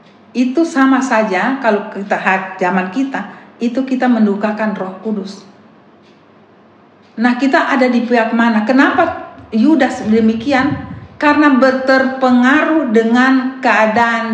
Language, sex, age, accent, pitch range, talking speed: Indonesian, female, 40-59, native, 225-280 Hz, 105 wpm